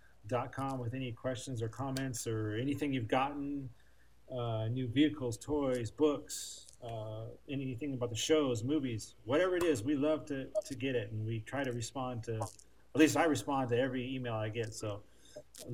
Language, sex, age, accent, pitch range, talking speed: English, male, 40-59, American, 110-150 Hz, 185 wpm